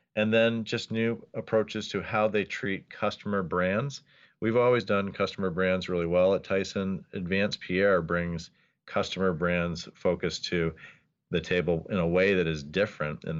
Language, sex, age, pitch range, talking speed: English, male, 40-59, 80-100 Hz, 160 wpm